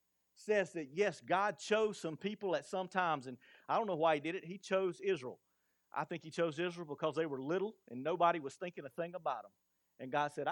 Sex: male